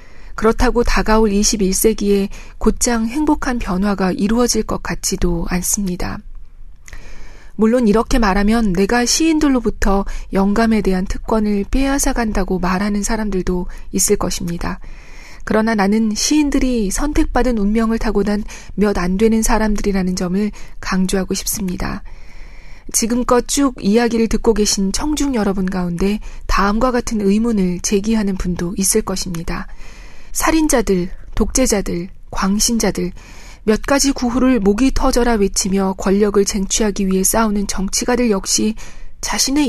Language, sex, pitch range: Korean, female, 190-235 Hz